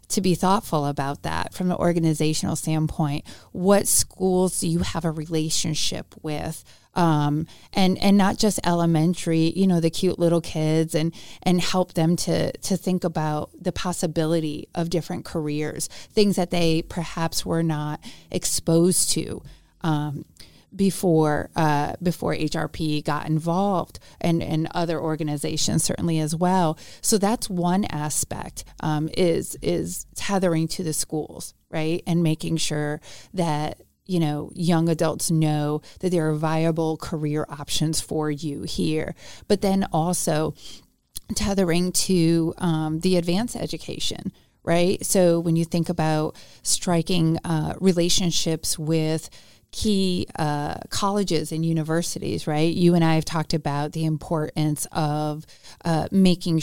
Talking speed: 135 wpm